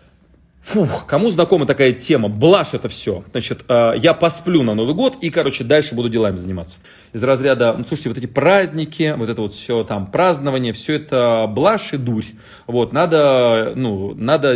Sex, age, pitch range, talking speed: male, 30-49, 110-155 Hz, 175 wpm